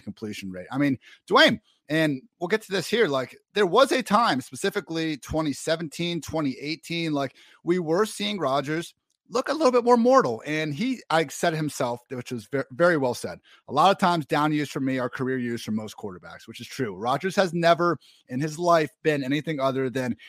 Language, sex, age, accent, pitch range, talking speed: English, male, 30-49, American, 130-170 Hz, 200 wpm